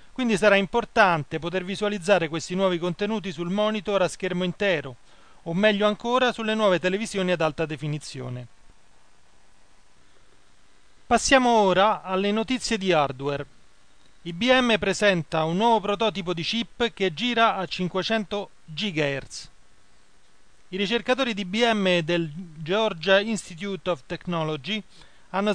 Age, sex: 30-49, male